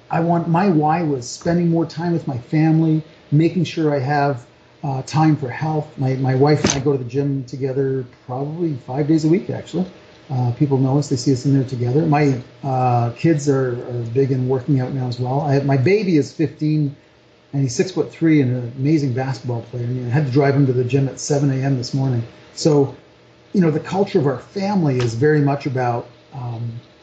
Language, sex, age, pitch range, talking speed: English, male, 40-59, 125-155 Hz, 225 wpm